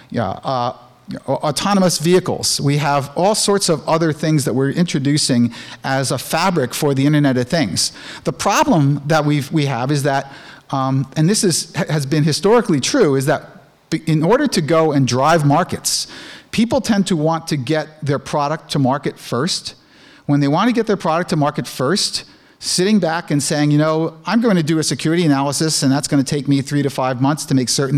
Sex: male